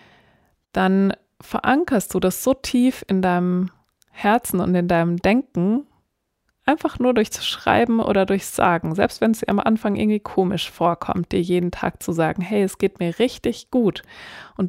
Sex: female